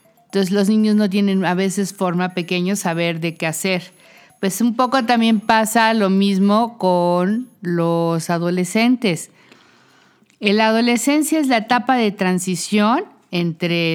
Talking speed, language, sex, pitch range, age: 140 wpm, Spanish, female, 170-205 Hz, 50-69